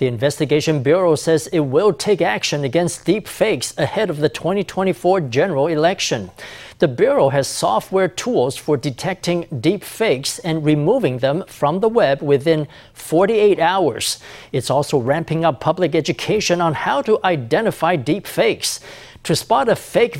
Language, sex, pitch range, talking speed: English, male, 145-185 Hz, 150 wpm